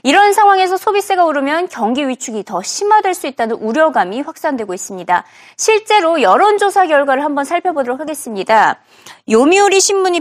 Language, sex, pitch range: Korean, female, 235-365 Hz